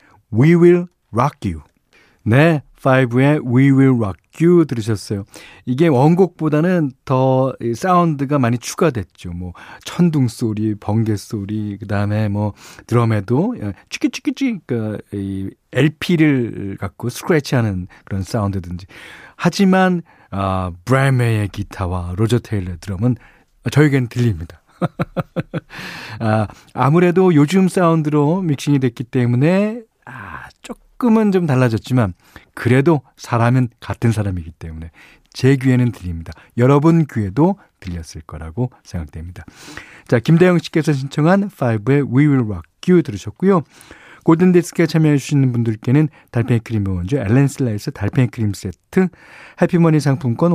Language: Korean